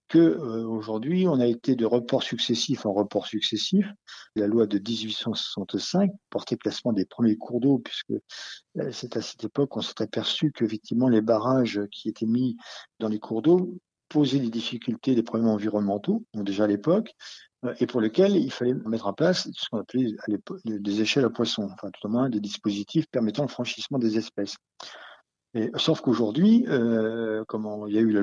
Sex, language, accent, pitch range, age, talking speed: male, French, French, 110-130 Hz, 50-69, 175 wpm